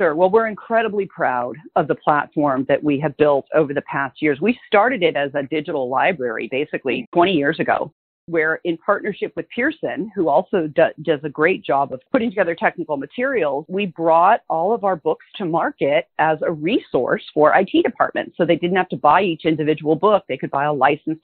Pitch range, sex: 155-230 Hz, female